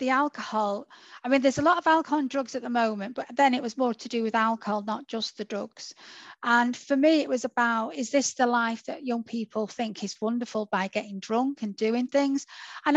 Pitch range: 220-260 Hz